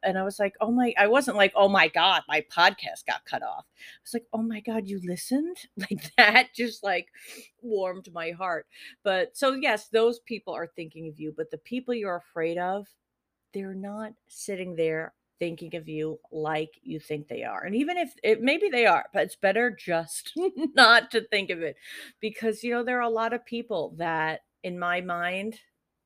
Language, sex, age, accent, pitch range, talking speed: English, female, 40-59, American, 165-220 Hz, 205 wpm